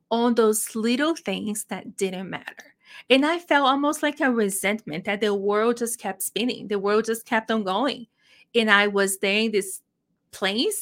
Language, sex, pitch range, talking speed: English, female, 205-270 Hz, 185 wpm